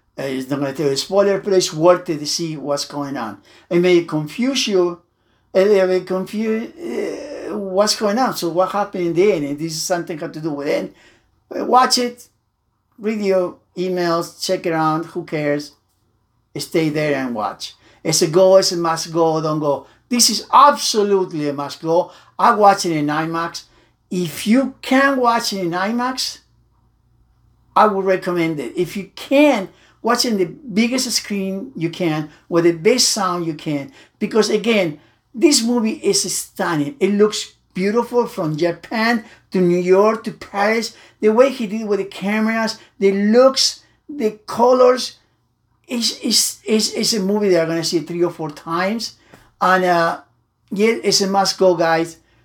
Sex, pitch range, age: male, 165-215 Hz, 60-79